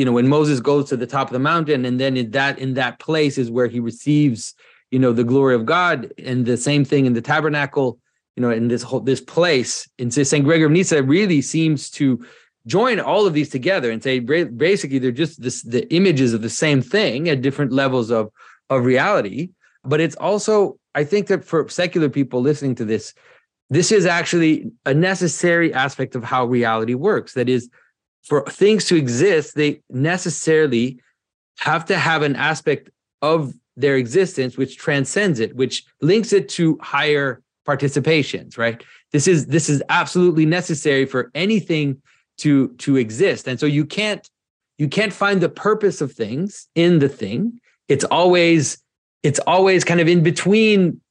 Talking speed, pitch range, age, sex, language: 180 wpm, 130-170 Hz, 30-49, male, English